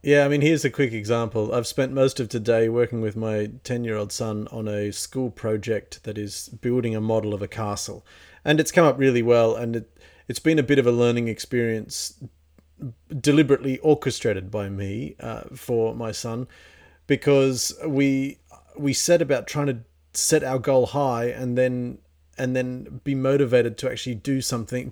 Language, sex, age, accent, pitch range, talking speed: English, male, 40-59, Australian, 115-145 Hz, 180 wpm